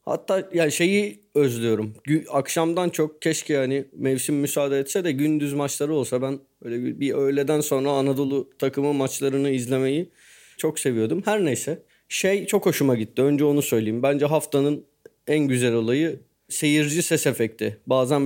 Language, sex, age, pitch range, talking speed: Turkish, male, 30-49, 120-160 Hz, 145 wpm